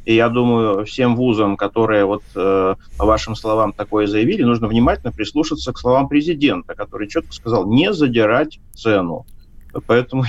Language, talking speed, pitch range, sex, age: Russian, 140 wpm, 105-130 Hz, male, 30-49